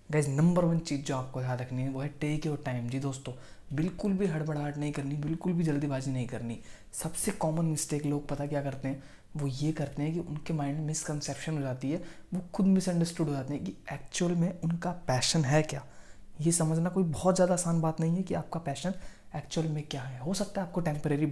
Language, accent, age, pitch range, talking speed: Hindi, native, 20-39, 135-160 Hz, 225 wpm